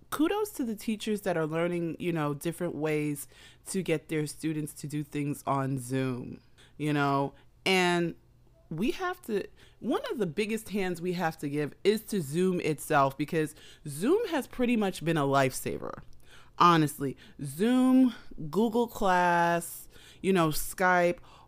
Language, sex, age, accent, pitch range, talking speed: English, female, 30-49, American, 145-185 Hz, 150 wpm